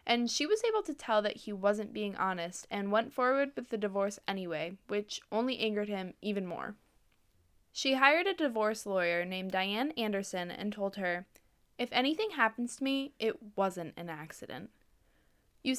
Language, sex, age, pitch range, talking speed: English, female, 10-29, 190-240 Hz, 170 wpm